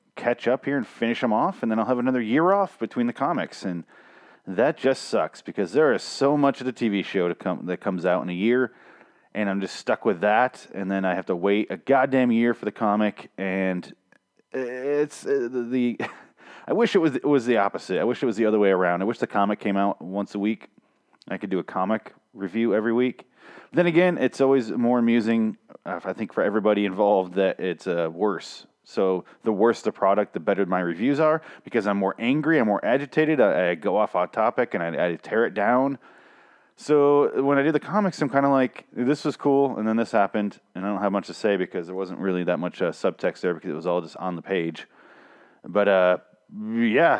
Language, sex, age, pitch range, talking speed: English, male, 30-49, 105-150 Hz, 230 wpm